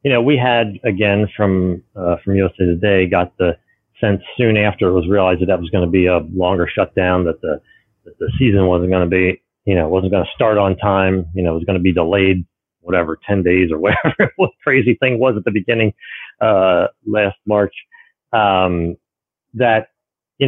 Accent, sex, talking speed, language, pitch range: American, male, 205 wpm, English, 90-110 Hz